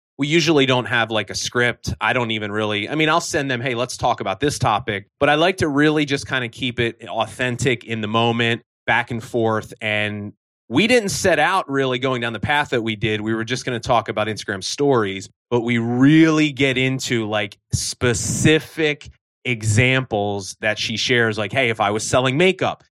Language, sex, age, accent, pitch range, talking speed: English, male, 30-49, American, 110-135 Hz, 205 wpm